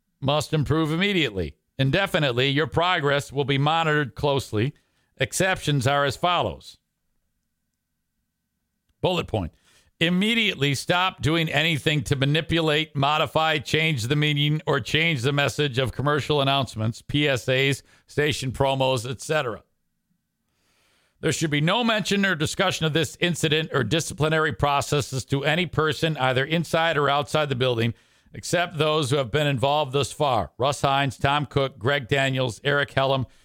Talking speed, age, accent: 135 wpm, 50-69, American